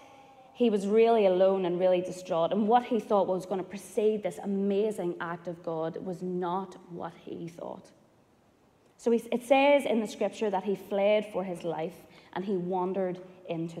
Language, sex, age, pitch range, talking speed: English, female, 20-39, 175-225 Hz, 175 wpm